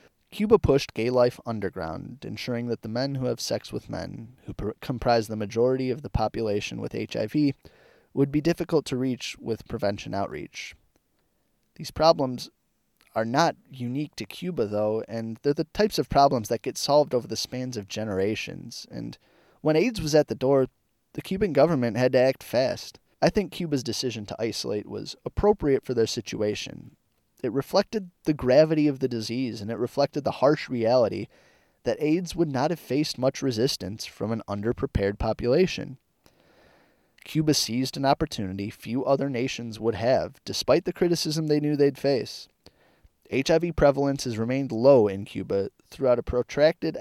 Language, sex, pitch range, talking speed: English, male, 115-145 Hz, 165 wpm